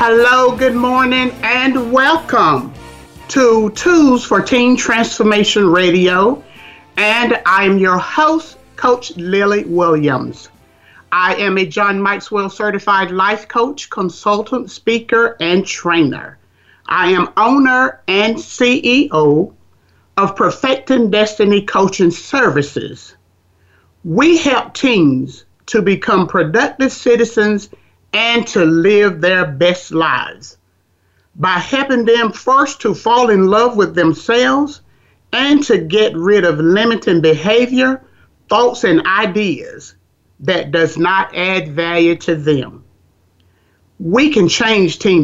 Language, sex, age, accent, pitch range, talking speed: English, male, 50-69, American, 170-245 Hz, 110 wpm